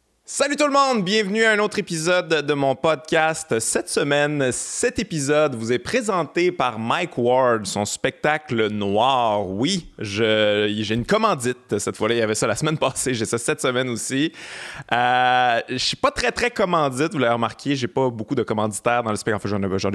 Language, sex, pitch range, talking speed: French, male, 110-140 Hz, 200 wpm